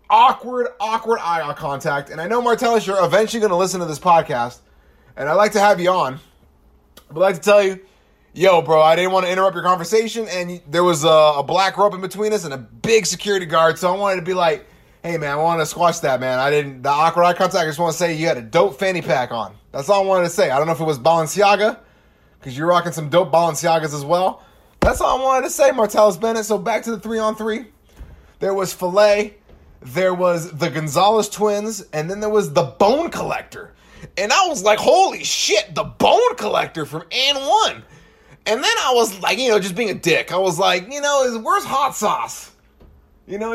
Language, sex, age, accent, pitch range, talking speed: English, male, 20-39, American, 165-220 Hz, 230 wpm